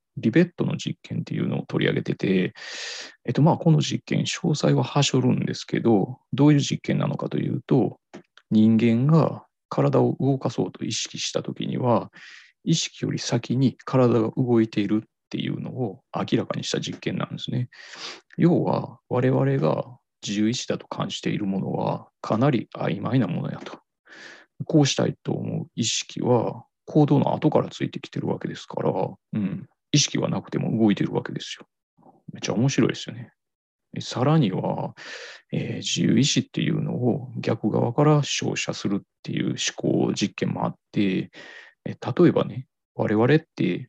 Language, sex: Japanese, male